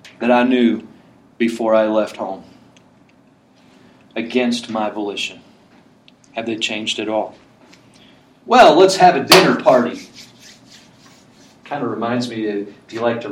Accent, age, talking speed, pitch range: American, 40-59, 130 wpm, 115-155 Hz